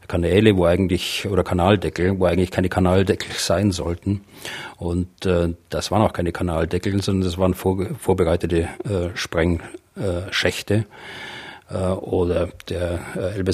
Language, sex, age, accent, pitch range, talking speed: German, male, 40-59, German, 85-100 Hz, 125 wpm